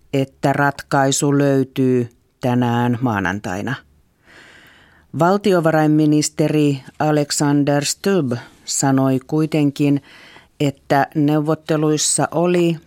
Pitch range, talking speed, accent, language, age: 120-150 Hz, 60 wpm, native, Finnish, 40-59